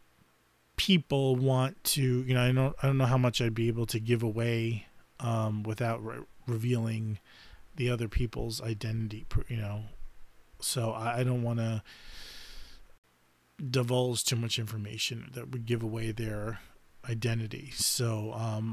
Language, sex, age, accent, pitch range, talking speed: English, male, 30-49, American, 110-130 Hz, 145 wpm